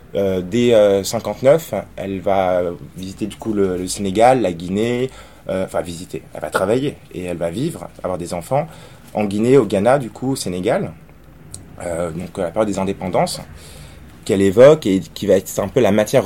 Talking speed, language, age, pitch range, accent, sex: 190 wpm, French, 20-39, 95-115 Hz, French, male